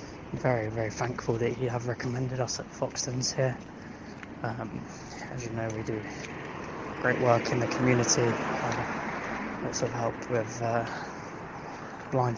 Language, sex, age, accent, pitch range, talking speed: English, male, 20-39, British, 115-135 Hz, 140 wpm